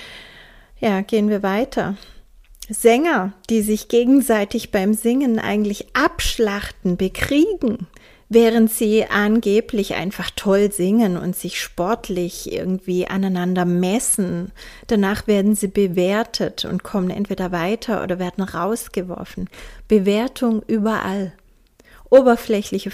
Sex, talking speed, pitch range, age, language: female, 100 wpm, 195-235 Hz, 30-49, German